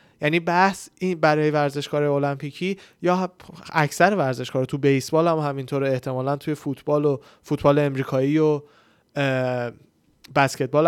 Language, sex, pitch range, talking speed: Persian, male, 140-170 Hz, 120 wpm